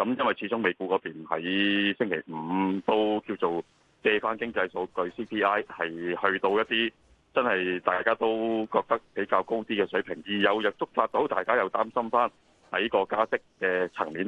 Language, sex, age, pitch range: Chinese, male, 30-49, 90-120 Hz